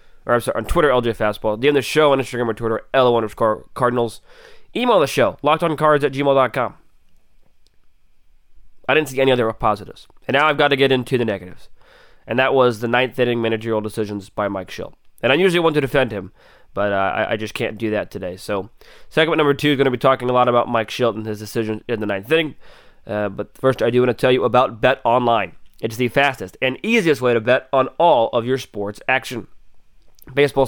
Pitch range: 115-145 Hz